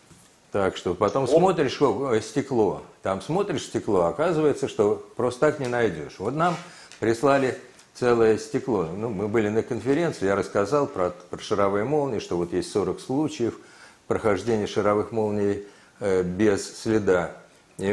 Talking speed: 140 wpm